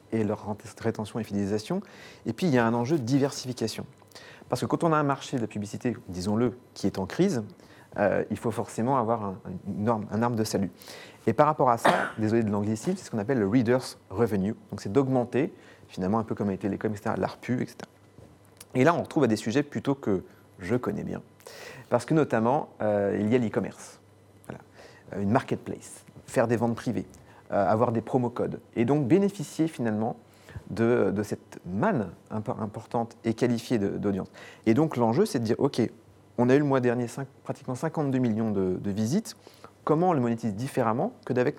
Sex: male